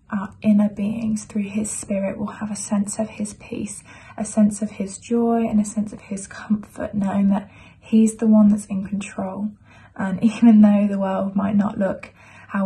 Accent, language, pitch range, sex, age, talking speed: British, English, 200-220 Hz, female, 20-39, 195 wpm